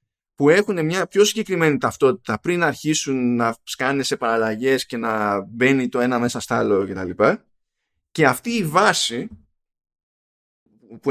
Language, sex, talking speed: Greek, male, 145 wpm